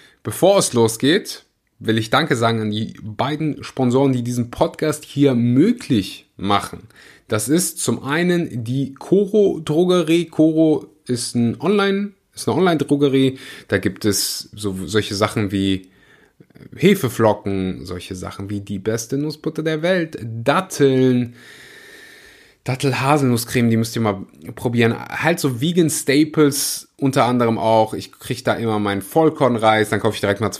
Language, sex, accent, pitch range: German, male, German, 110-155 Hz